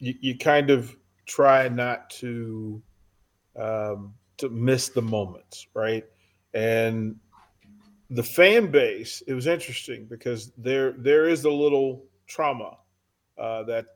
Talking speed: 115 wpm